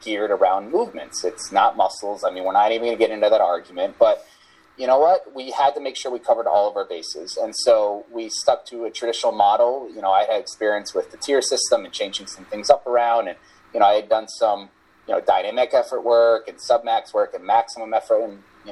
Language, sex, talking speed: English, male, 235 wpm